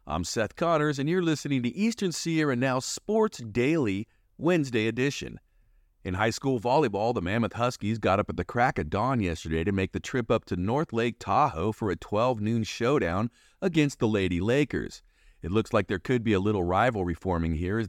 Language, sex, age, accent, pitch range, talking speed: English, male, 40-59, American, 95-130 Hz, 200 wpm